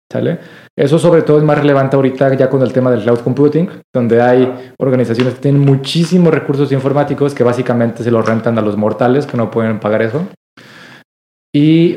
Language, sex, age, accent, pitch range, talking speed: Spanish, male, 20-39, Mexican, 130-160 Hz, 185 wpm